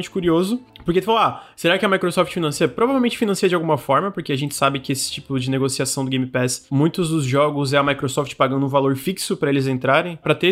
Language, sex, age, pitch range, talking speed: Portuguese, male, 20-39, 135-175 Hz, 240 wpm